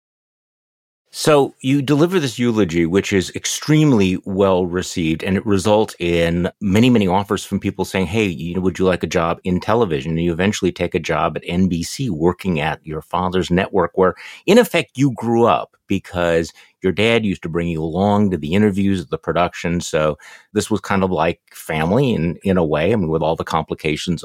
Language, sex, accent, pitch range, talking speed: English, male, American, 90-110 Hz, 195 wpm